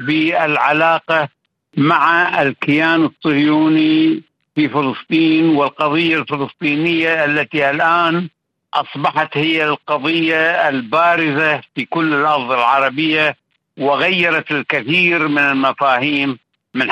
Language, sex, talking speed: Arabic, male, 80 wpm